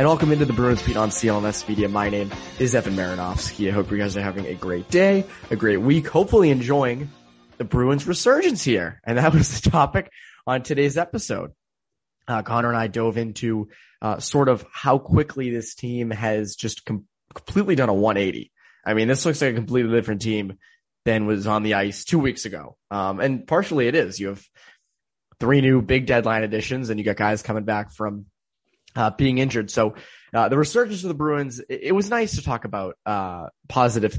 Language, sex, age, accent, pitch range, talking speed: English, male, 20-39, American, 105-135 Hz, 200 wpm